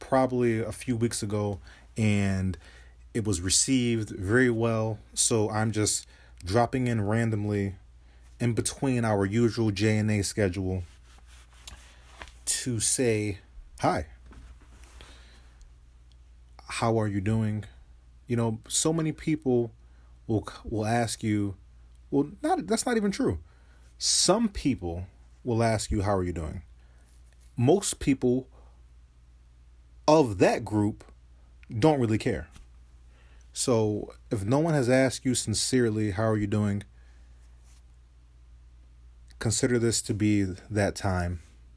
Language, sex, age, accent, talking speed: English, male, 30-49, American, 120 wpm